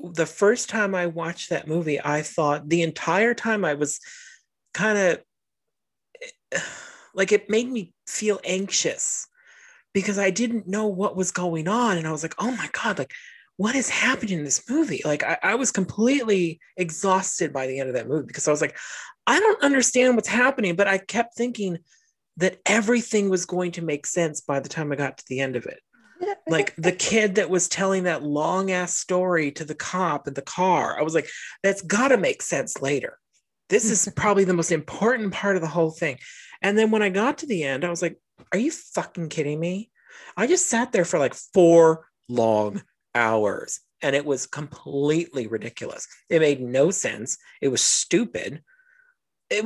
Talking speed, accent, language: 195 wpm, American, English